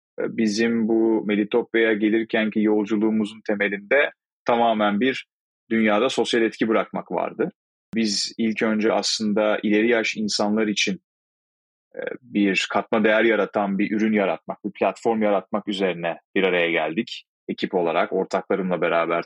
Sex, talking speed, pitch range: male, 120 wpm, 105-120 Hz